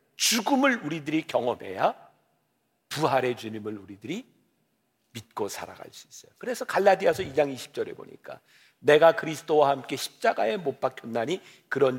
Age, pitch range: 50-69, 130-170 Hz